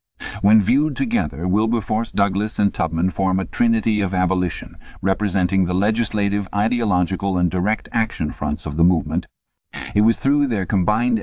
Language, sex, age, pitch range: English, male, 50-69, 85-105 Hz